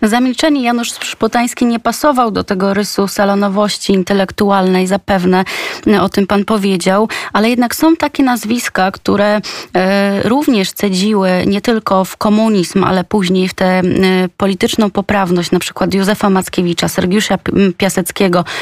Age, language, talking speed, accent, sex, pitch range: 20-39, Polish, 120 wpm, native, female, 195-220 Hz